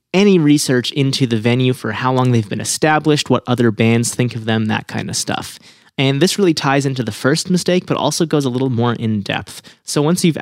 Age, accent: 20-39, American